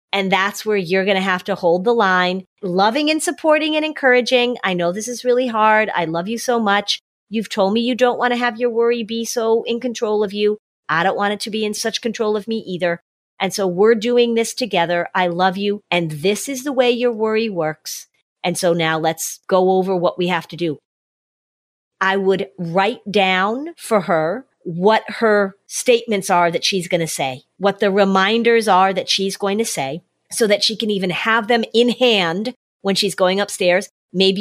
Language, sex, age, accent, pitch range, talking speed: English, female, 40-59, American, 180-225 Hz, 210 wpm